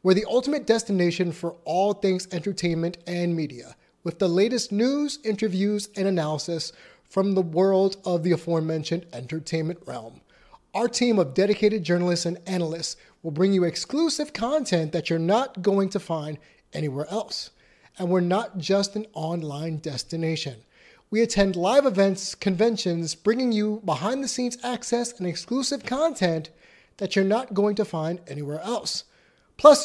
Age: 30-49